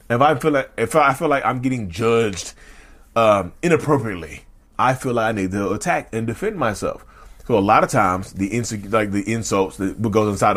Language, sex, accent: English, male, American